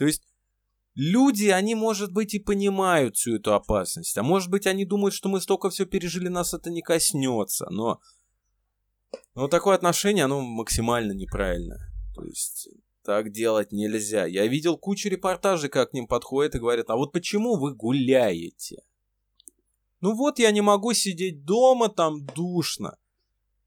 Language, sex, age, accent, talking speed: Ukrainian, male, 20-39, native, 155 wpm